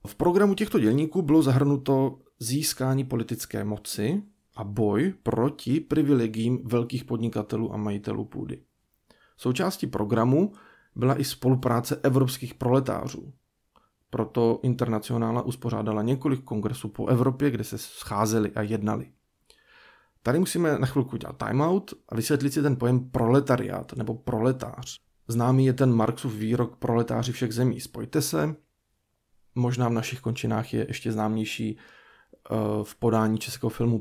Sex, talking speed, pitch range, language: male, 125 wpm, 115-140 Hz, Czech